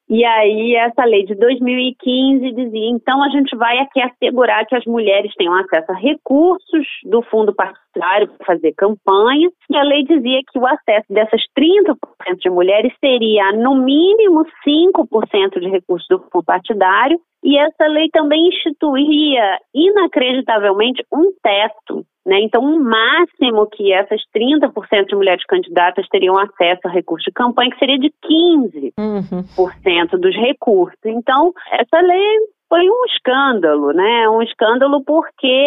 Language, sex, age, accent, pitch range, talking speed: Portuguese, female, 30-49, Brazilian, 215-310 Hz, 145 wpm